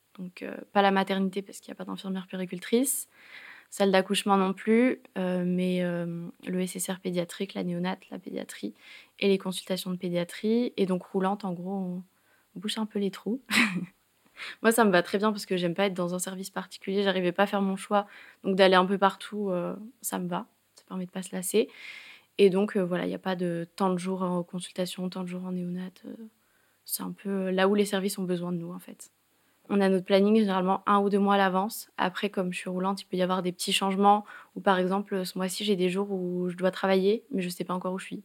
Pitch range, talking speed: 185-200 Hz, 245 wpm